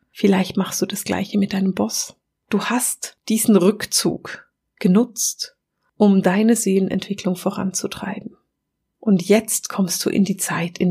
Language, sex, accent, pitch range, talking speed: German, female, German, 185-215 Hz, 140 wpm